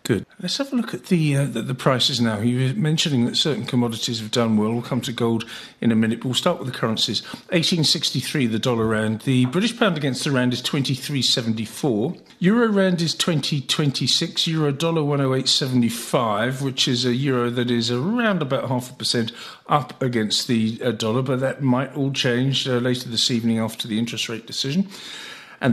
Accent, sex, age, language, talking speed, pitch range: British, male, 50-69, English, 195 wpm, 115-150 Hz